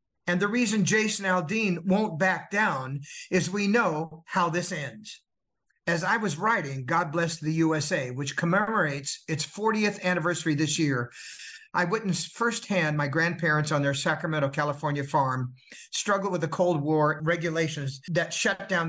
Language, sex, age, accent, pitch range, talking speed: English, male, 50-69, American, 150-190 Hz, 155 wpm